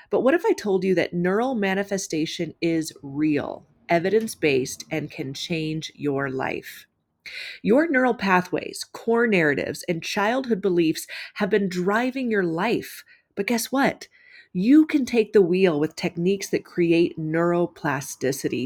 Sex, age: female, 30-49